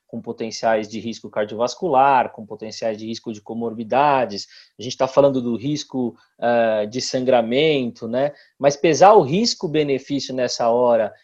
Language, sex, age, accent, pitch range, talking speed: Portuguese, male, 20-39, Brazilian, 125-160 Hz, 145 wpm